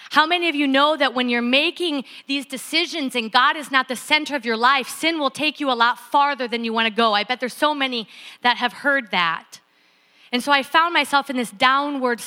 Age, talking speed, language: 40-59, 240 wpm, English